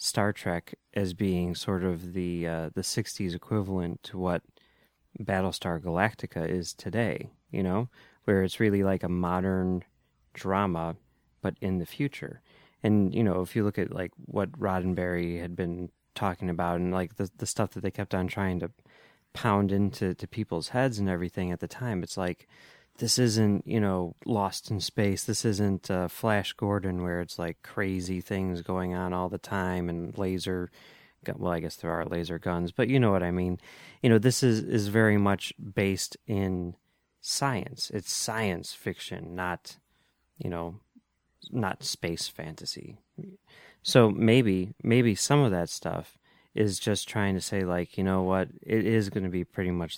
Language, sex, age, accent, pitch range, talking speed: English, male, 30-49, American, 90-105 Hz, 175 wpm